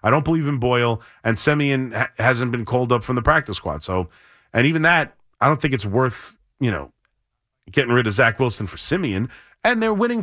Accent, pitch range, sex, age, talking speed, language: American, 110-150 Hz, male, 30-49, 210 wpm, English